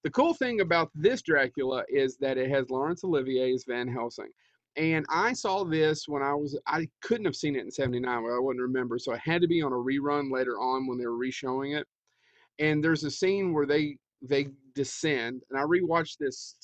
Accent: American